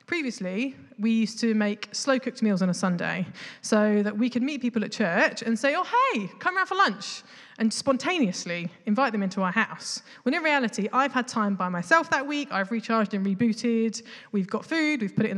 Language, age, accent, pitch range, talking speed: English, 20-39, British, 195-245 Hz, 210 wpm